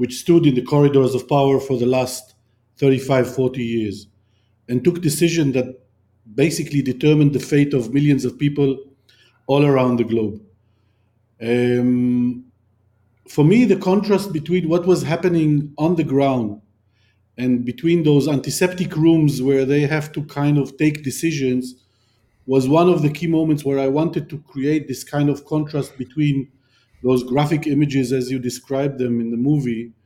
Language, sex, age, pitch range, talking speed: English, male, 50-69, 125-155 Hz, 160 wpm